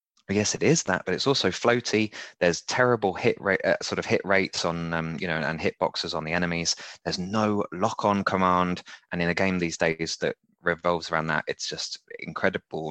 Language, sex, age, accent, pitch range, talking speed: English, male, 20-39, British, 85-115 Hz, 210 wpm